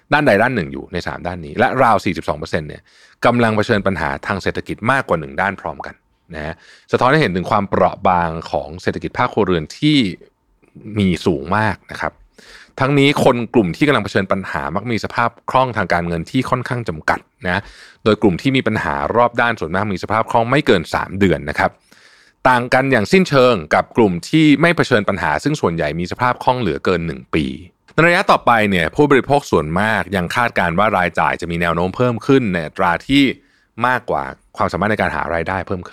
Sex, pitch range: male, 85-130 Hz